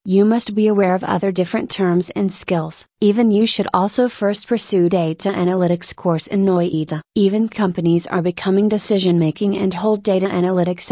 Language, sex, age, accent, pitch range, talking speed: English, female, 30-49, American, 180-205 Hz, 165 wpm